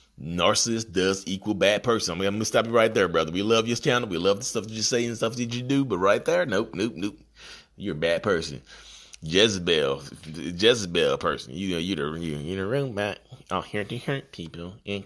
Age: 30-49